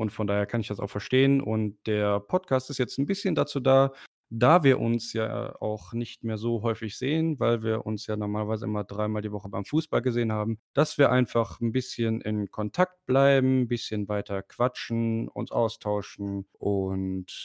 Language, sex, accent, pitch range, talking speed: German, male, German, 110-140 Hz, 190 wpm